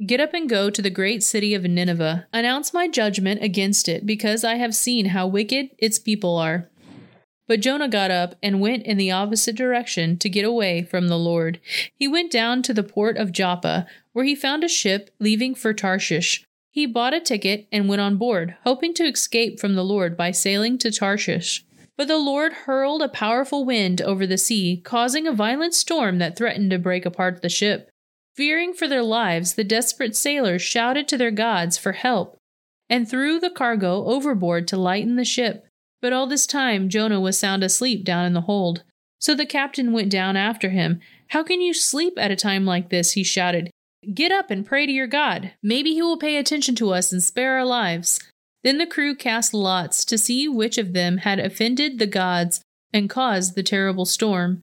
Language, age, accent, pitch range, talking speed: English, 30-49, American, 190-255 Hz, 200 wpm